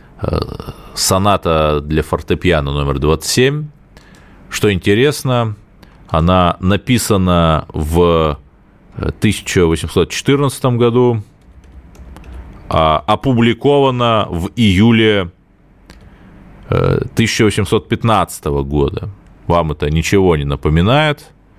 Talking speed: 65 wpm